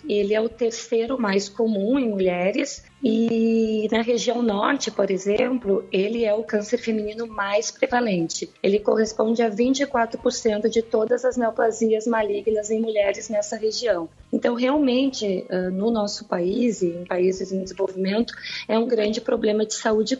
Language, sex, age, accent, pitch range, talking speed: Portuguese, female, 20-39, Brazilian, 205-235 Hz, 150 wpm